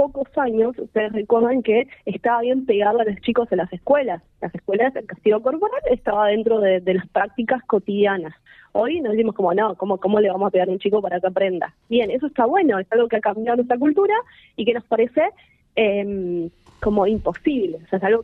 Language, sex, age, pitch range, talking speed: Spanish, female, 20-39, 195-255 Hz, 215 wpm